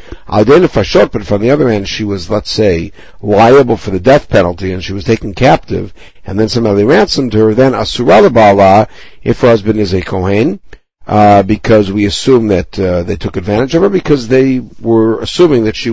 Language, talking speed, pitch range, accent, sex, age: English, 180 wpm, 100-130 Hz, American, male, 60-79